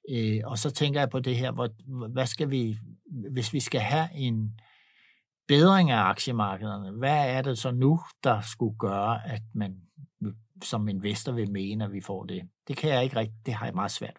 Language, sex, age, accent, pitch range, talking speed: Danish, male, 60-79, native, 110-135 Hz, 200 wpm